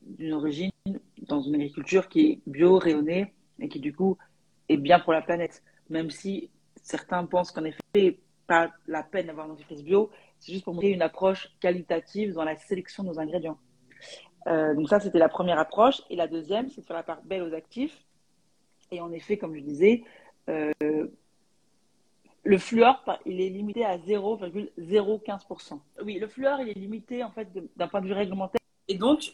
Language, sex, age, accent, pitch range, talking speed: French, female, 40-59, French, 170-220 Hz, 190 wpm